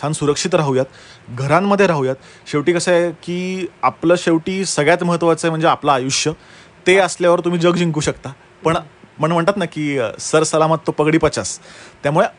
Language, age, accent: Marathi, 30-49, native